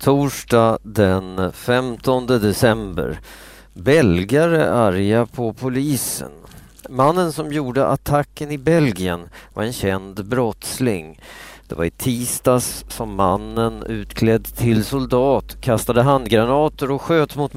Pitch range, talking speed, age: 95-125 Hz, 110 wpm, 40-59